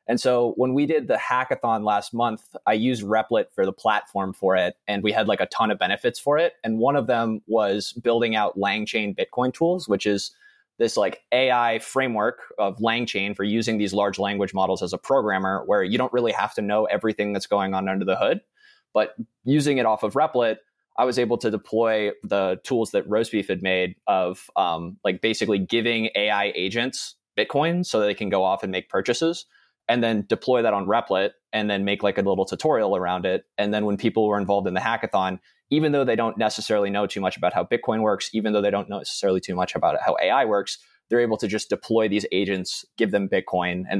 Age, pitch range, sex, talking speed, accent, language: 20-39, 100-120 Hz, male, 220 wpm, American, English